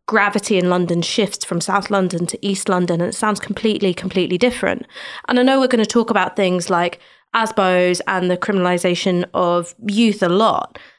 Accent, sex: British, female